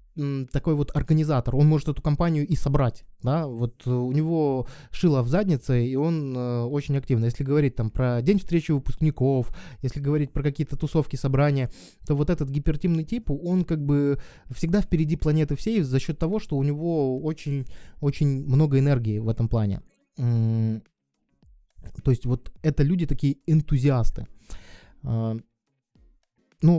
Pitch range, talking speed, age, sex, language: 115-145 Hz, 150 wpm, 20-39, male, Russian